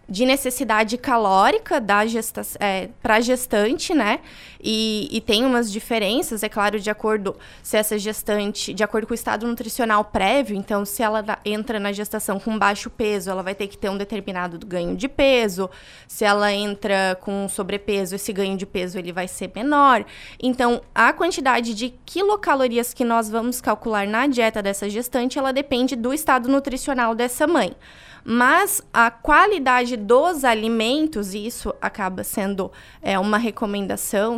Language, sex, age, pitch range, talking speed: Portuguese, female, 20-39, 205-255 Hz, 160 wpm